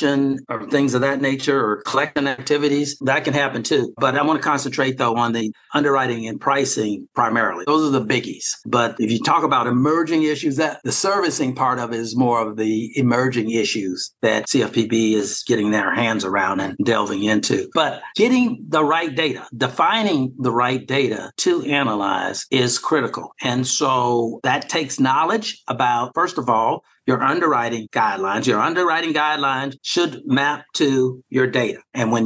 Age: 50-69